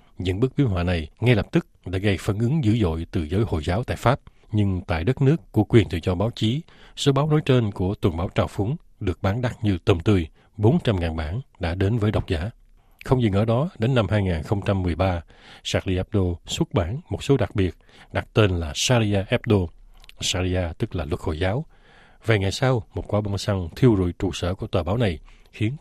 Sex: male